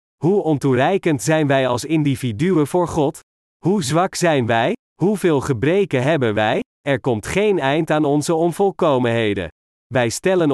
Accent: Dutch